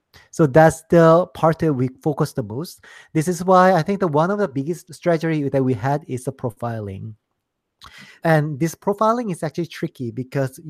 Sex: male